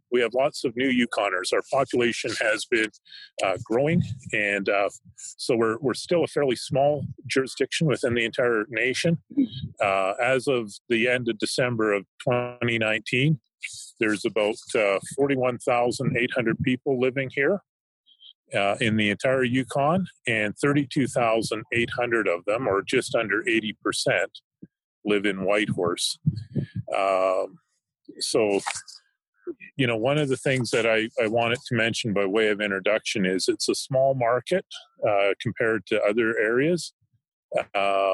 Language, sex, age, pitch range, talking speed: English, male, 40-59, 110-145 Hz, 135 wpm